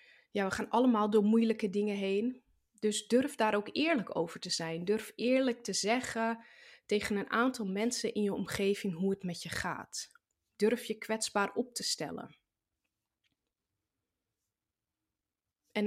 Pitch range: 190-230 Hz